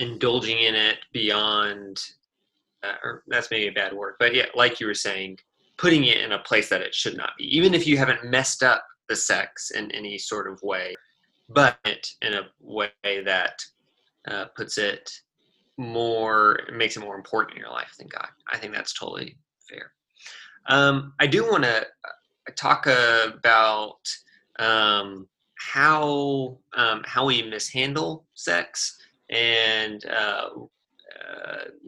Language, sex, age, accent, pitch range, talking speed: English, male, 20-39, American, 110-140 Hz, 150 wpm